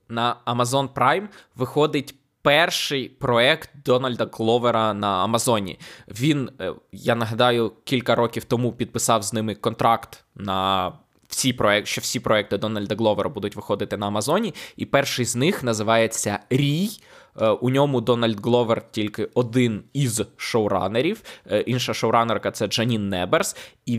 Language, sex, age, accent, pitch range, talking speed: Ukrainian, male, 20-39, native, 110-130 Hz, 135 wpm